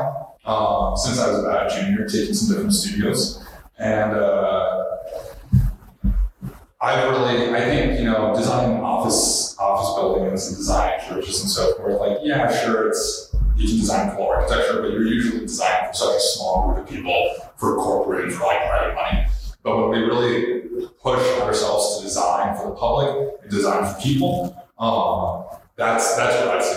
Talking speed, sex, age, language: 170 wpm, male, 30-49, English